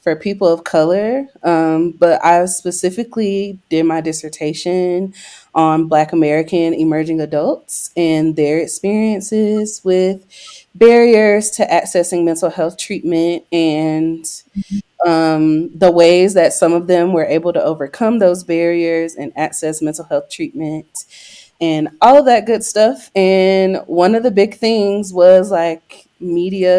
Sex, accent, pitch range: female, American, 160-205 Hz